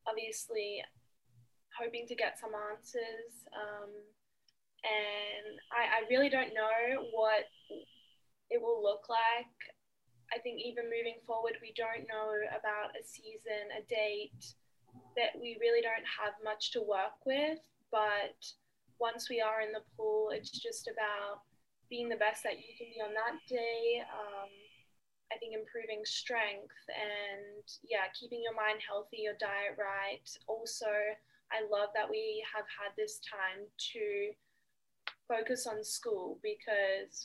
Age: 10-29